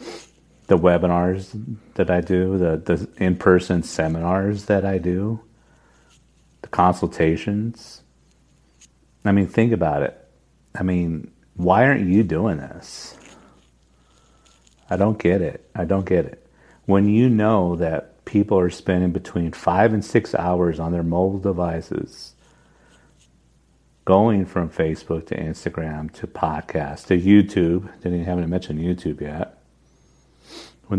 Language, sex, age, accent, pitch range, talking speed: English, male, 50-69, American, 80-95 Hz, 130 wpm